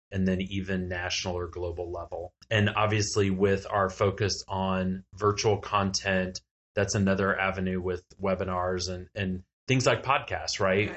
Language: English